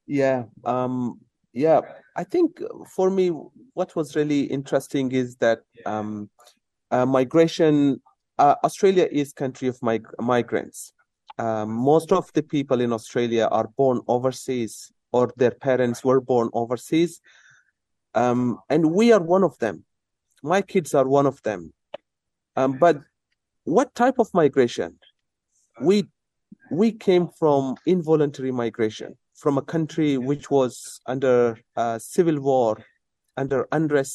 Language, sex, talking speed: English, male, 130 wpm